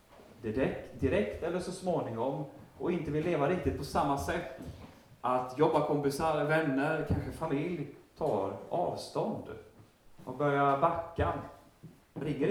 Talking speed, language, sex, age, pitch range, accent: 115 wpm, Swedish, male, 30-49, 105-145 Hz, native